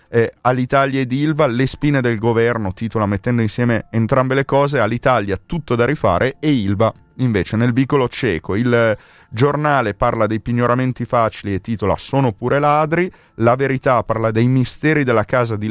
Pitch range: 105-130 Hz